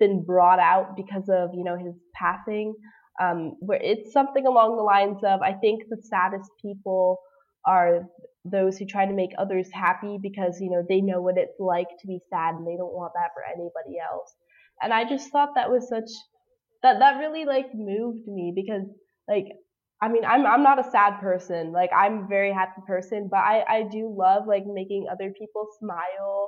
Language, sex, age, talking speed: English, female, 10-29, 200 wpm